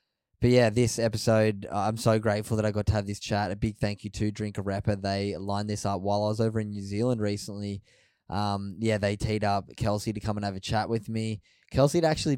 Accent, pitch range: Australian, 100-115 Hz